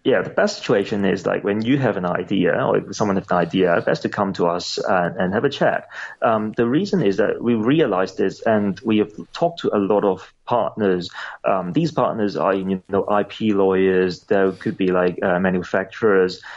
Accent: British